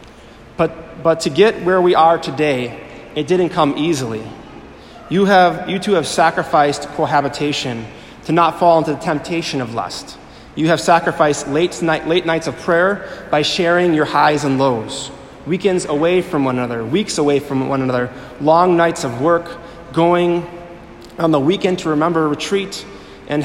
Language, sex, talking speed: English, male, 165 wpm